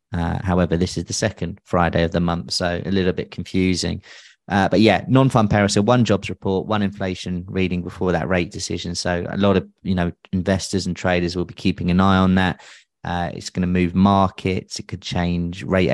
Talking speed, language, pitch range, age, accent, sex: 215 wpm, English, 85-95 Hz, 30-49, British, male